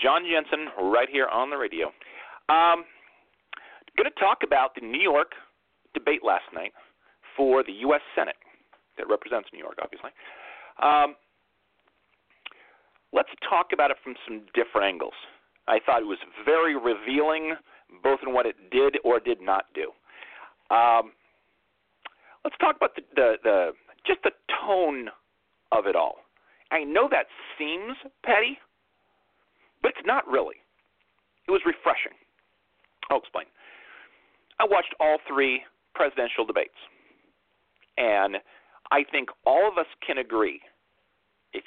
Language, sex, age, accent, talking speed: English, male, 40-59, American, 135 wpm